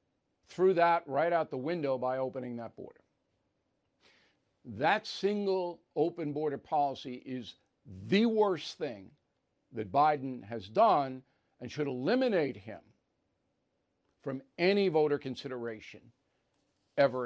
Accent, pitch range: American, 140-185 Hz